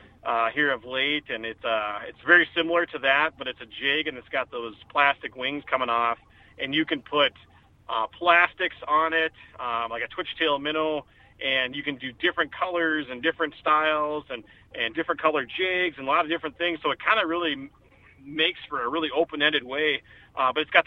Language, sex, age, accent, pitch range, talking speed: English, male, 40-59, American, 125-165 Hz, 210 wpm